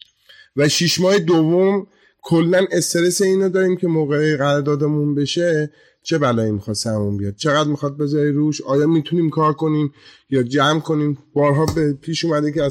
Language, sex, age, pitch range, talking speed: Persian, male, 30-49, 145-175 Hz, 160 wpm